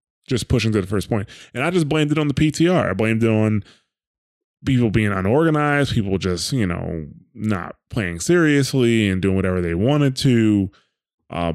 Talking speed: 180 wpm